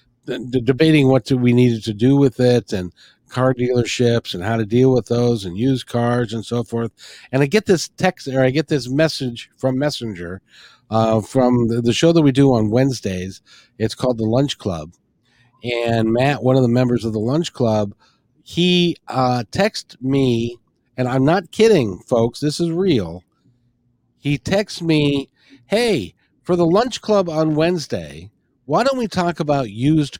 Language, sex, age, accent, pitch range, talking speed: English, male, 50-69, American, 120-160 Hz, 175 wpm